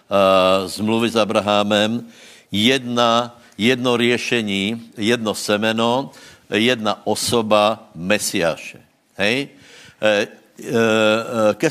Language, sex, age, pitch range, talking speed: Slovak, male, 60-79, 100-120 Hz, 75 wpm